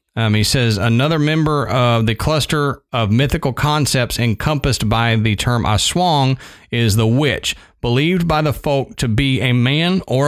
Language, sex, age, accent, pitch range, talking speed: English, male, 40-59, American, 115-145 Hz, 165 wpm